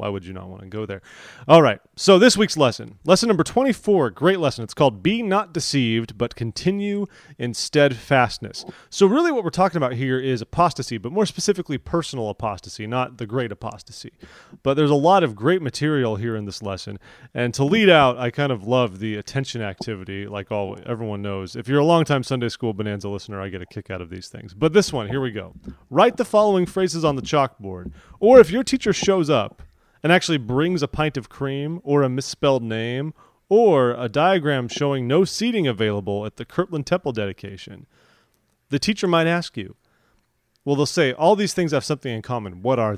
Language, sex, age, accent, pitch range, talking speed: English, male, 30-49, American, 110-165 Hz, 205 wpm